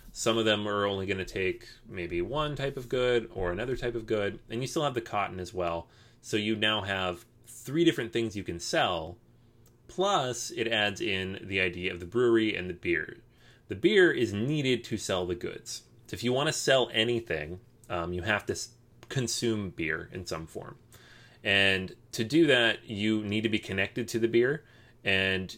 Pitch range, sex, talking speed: 95-120 Hz, male, 195 wpm